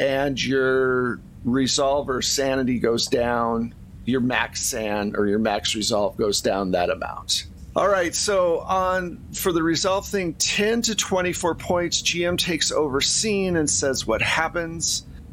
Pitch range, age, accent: 120-160 Hz, 40-59, American